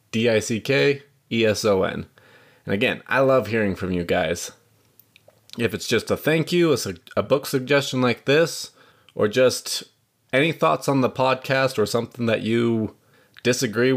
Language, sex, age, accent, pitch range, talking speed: English, male, 20-39, American, 105-130 Hz, 140 wpm